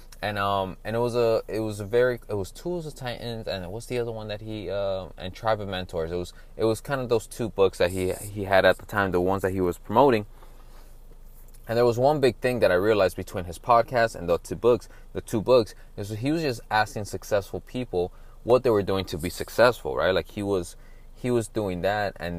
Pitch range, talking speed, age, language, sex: 90-115 Hz, 245 wpm, 20-39, English, male